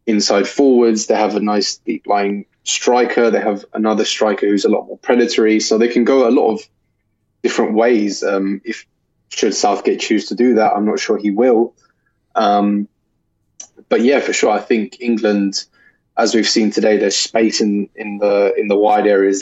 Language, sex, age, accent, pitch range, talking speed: English, male, 20-39, British, 105-120 Hz, 185 wpm